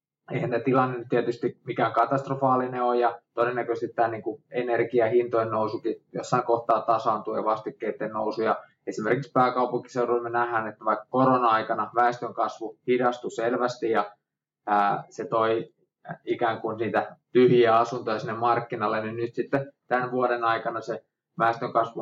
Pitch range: 110-125 Hz